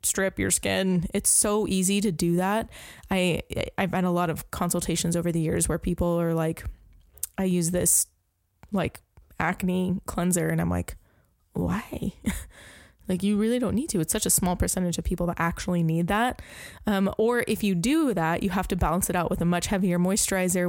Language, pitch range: English, 175-195 Hz